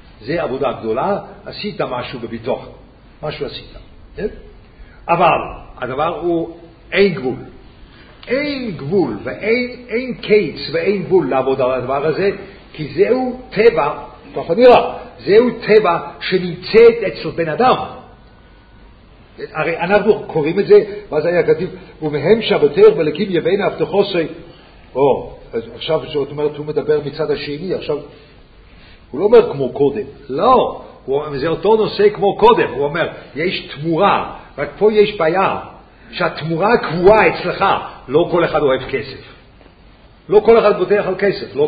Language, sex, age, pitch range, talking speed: English, male, 50-69, 160-240 Hz, 80 wpm